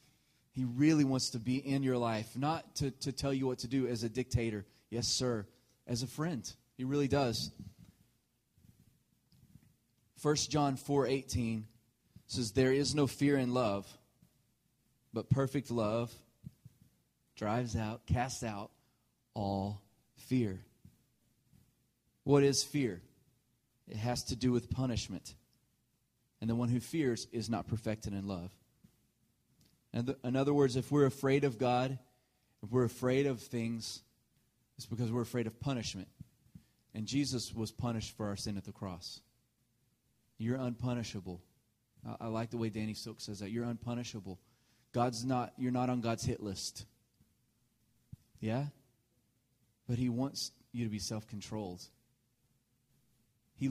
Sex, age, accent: male, 30-49, American